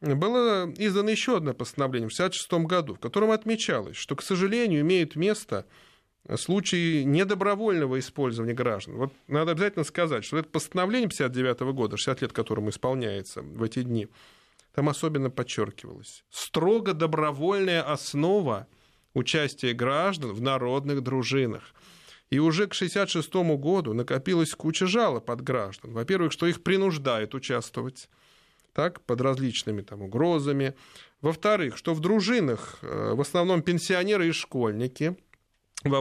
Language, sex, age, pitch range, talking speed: Russian, male, 20-39, 130-185 Hz, 130 wpm